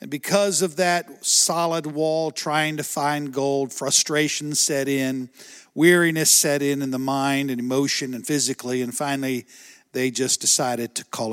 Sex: male